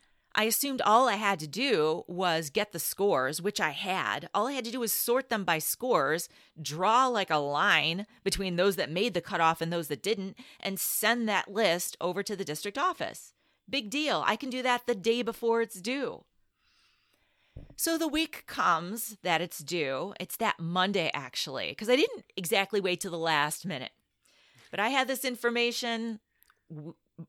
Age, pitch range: 30-49, 170-235 Hz